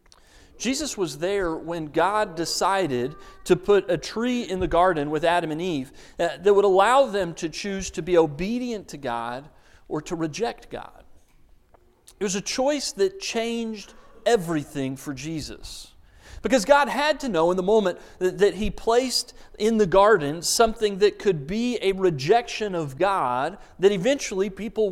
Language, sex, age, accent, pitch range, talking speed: English, male, 40-59, American, 160-215 Hz, 160 wpm